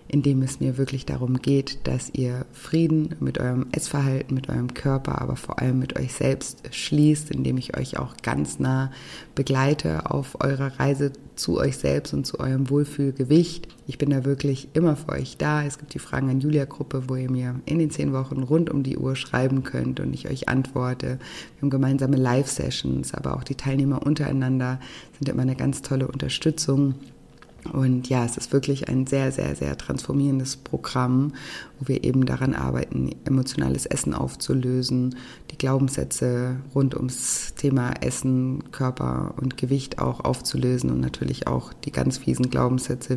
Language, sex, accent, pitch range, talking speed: German, female, German, 125-140 Hz, 170 wpm